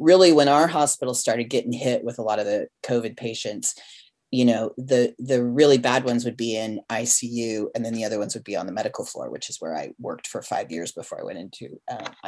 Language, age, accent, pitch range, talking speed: English, 40-59, American, 125-155 Hz, 240 wpm